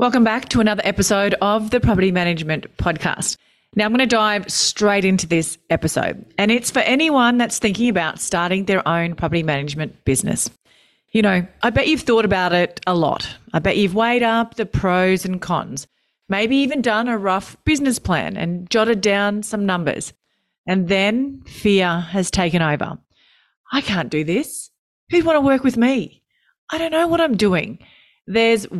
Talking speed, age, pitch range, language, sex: 180 wpm, 40-59, 170-220 Hz, English, female